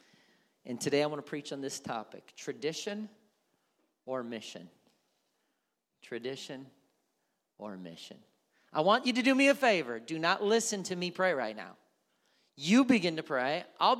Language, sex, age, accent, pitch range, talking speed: English, male, 40-59, American, 160-210 Hz, 155 wpm